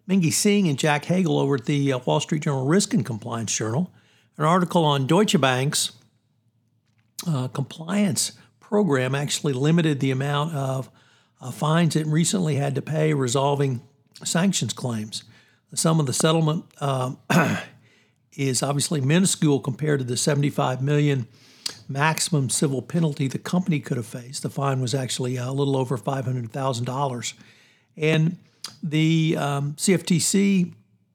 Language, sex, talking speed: English, male, 145 wpm